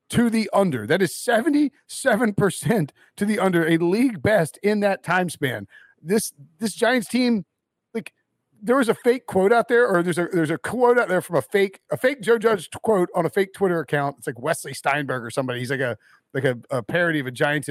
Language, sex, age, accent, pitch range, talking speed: English, male, 40-59, American, 155-220 Hz, 220 wpm